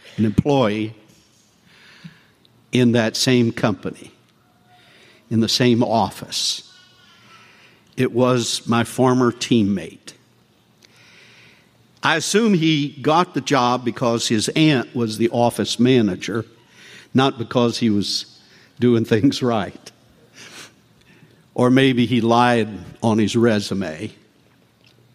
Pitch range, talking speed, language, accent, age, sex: 115-145 Hz, 100 wpm, English, American, 60-79, male